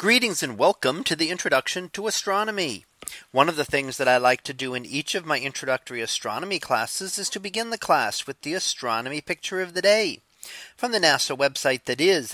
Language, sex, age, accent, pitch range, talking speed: English, male, 40-59, American, 135-195 Hz, 205 wpm